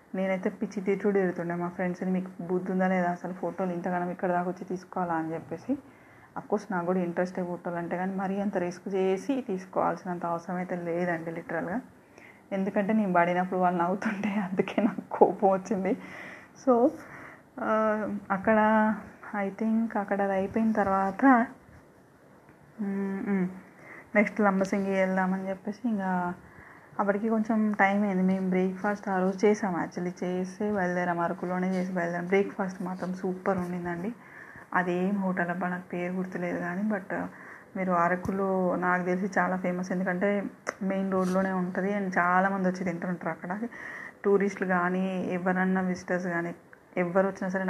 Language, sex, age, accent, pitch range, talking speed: Telugu, female, 20-39, native, 180-200 Hz, 135 wpm